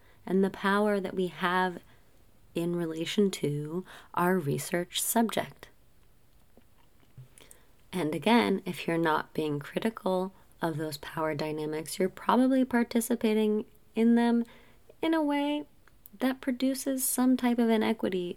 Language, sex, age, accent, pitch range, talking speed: English, female, 20-39, American, 150-225 Hz, 120 wpm